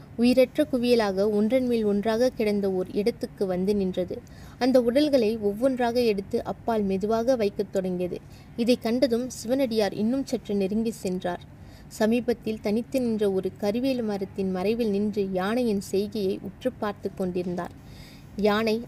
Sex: female